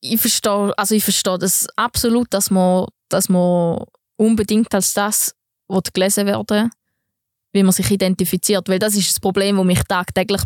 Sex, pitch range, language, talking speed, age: female, 180-210 Hz, German, 170 wpm, 20-39